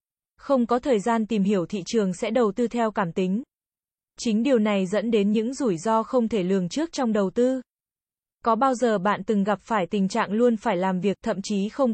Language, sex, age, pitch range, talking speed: Vietnamese, female, 20-39, 200-245 Hz, 225 wpm